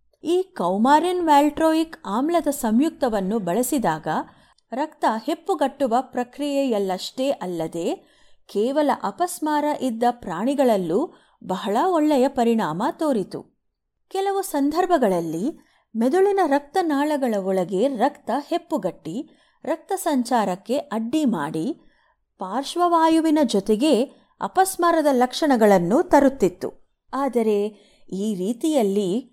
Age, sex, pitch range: 30-49, female, 215-295 Hz